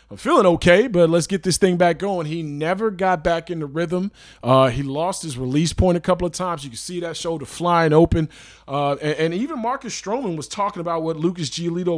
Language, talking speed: English, 230 wpm